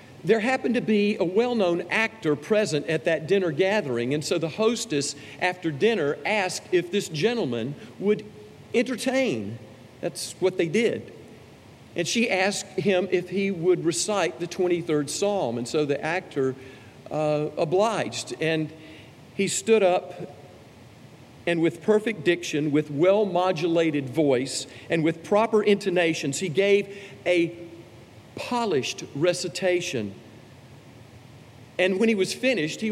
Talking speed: 130 wpm